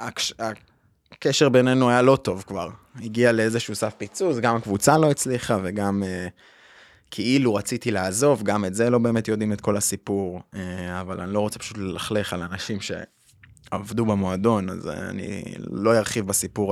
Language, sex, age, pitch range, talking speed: Hebrew, male, 20-39, 100-125 Hz, 150 wpm